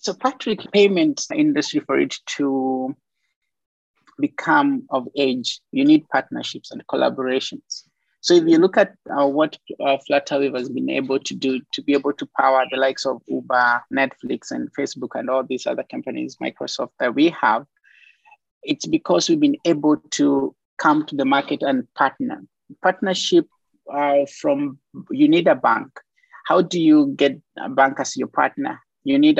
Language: English